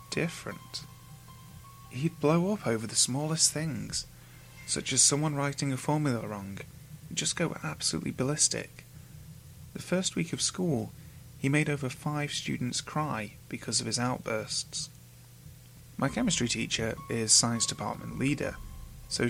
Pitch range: 110-145 Hz